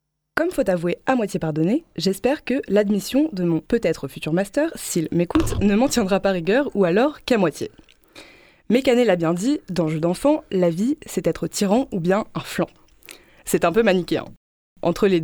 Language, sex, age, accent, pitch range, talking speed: French, female, 20-39, French, 175-220 Hz, 190 wpm